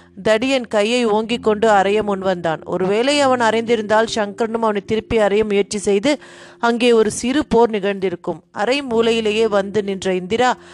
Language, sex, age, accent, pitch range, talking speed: Tamil, female, 30-49, native, 200-245 Hz, 105 wpm